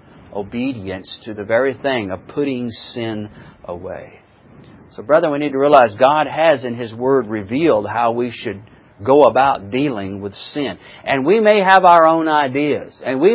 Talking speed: 170 wpm